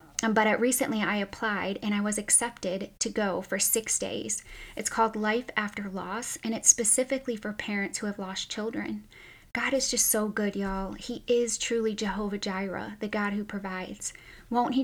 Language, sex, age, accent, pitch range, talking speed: English, female, 20-39, American, 200-225 Hz, 180 wpm